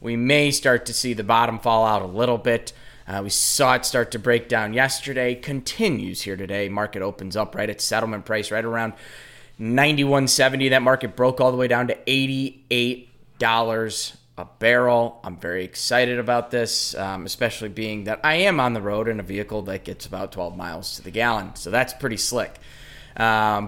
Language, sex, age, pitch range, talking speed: English, male, 20-39, 105-125 Hz, 190 wpm